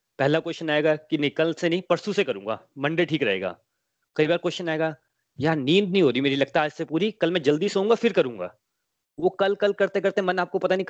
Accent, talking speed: native, 230 wpm